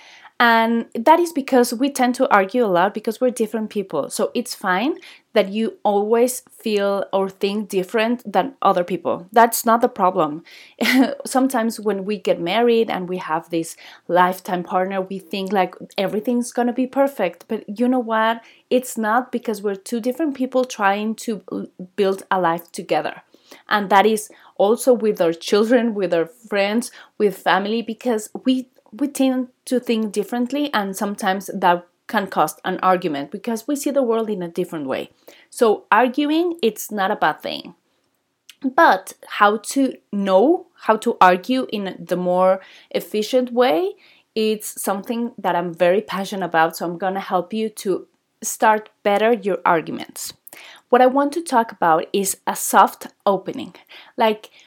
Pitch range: 190-250 Hz